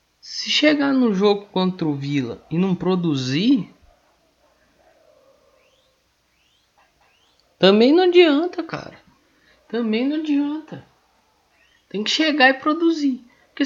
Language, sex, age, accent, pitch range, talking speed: Portuguese, male, 20-39, Brazilian, 145-240 Hz, 100 wpm